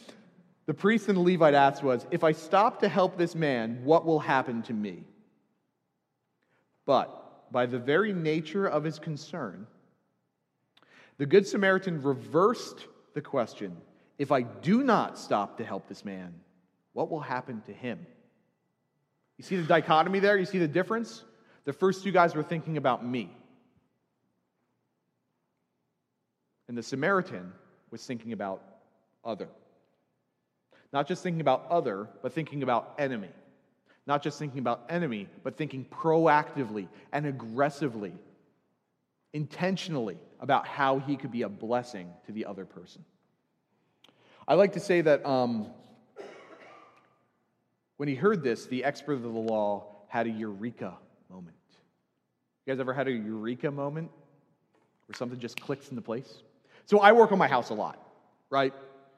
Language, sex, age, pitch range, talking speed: English, male, 40-59, 120-175 Hz, 145 wpm